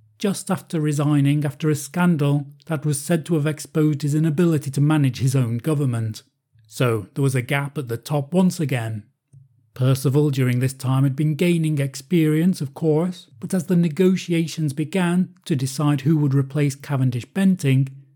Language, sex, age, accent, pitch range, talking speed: English, male, 40-59, British, 130-175 Hz, 170 wpm